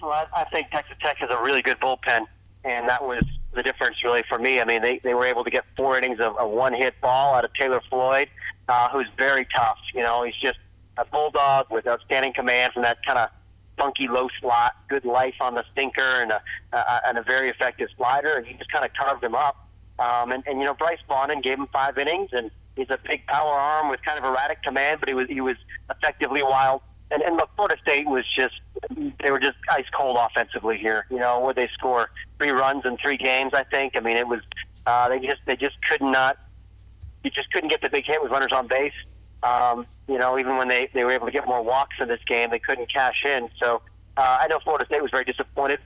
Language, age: English, 40-59